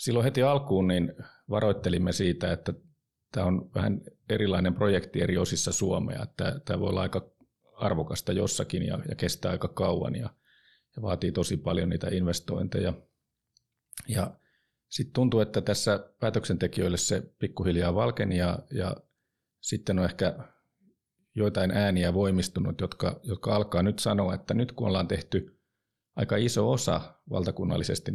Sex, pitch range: male, 90-115 Hz